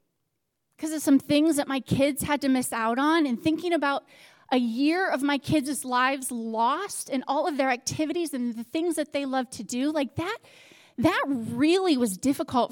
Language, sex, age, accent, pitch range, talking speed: English, female, 30-49, American, 240-310 Hz, 195 wpm